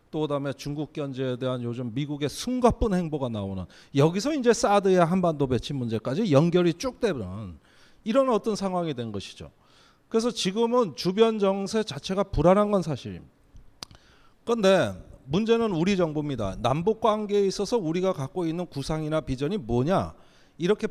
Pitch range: 135-205 Hz